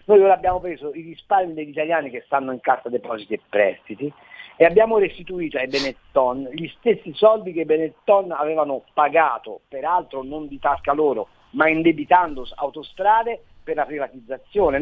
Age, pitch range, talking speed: 50-69, 145-200 Hz, 160 wpm